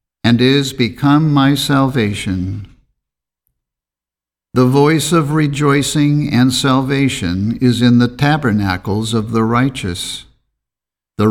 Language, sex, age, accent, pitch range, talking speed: English, male, 50-69, American, 100-130 Hz, 100 wpm